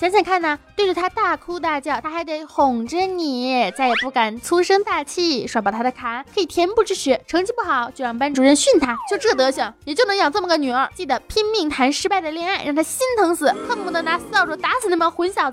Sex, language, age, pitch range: female, Chinese, 20-39, 260-380 Hz